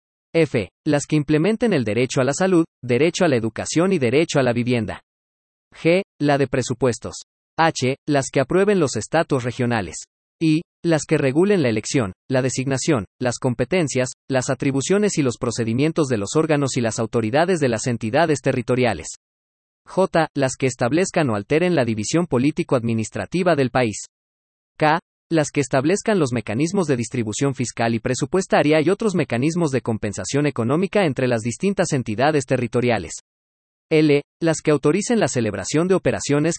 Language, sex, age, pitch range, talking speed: Spanish, male, 40-59, 115-160 Hz, 155 wpm